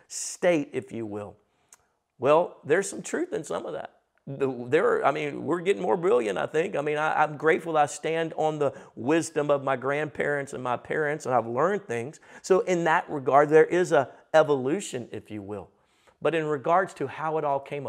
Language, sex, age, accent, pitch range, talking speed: English, male, 40-59, American, 125-165 Hz, 200 wpm